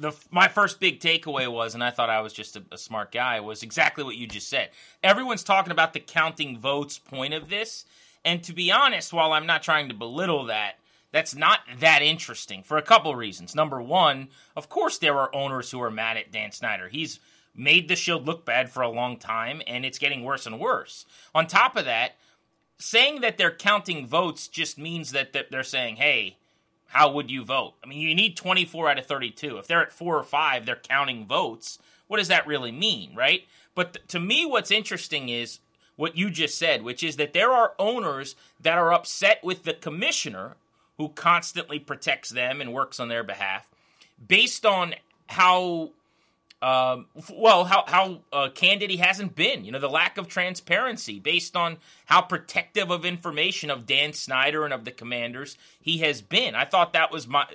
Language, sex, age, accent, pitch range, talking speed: English, male, 30-49, American, 130-175 Hz, 200 wpm